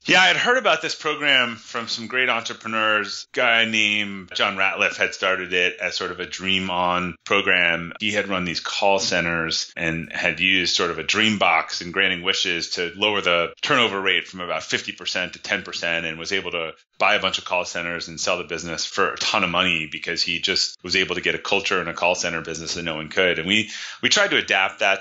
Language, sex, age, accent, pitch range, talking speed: English, male, 30-49, American, 85-105 Hz, 230 wpm